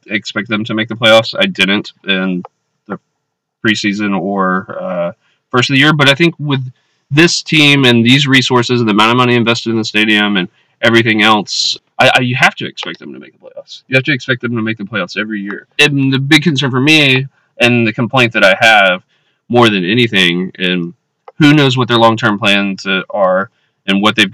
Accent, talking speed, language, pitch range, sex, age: American, 210 wpm, English, 100-125 Hz, male, 20-39